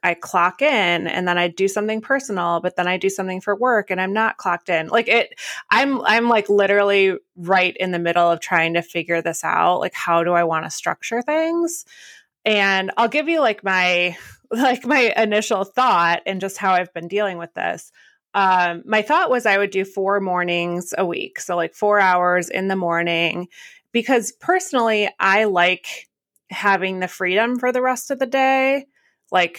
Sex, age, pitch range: female, 30-49, 175-220 Hz